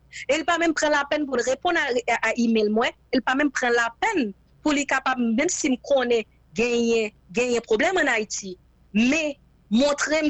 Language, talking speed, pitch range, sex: English, 210 wpm, 230-285 Hz, female